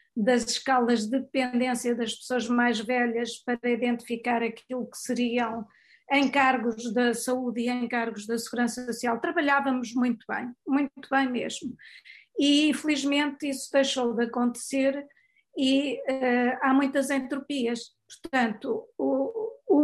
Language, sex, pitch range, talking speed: Portuguese, female, 240-270 Hz, 120 wpm